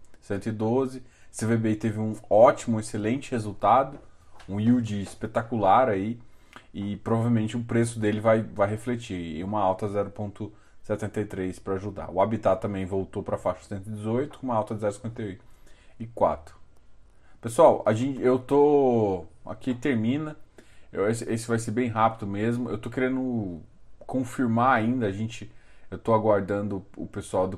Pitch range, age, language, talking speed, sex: 100-120 Hz, 20-39, Portuguese, 145 wpm, male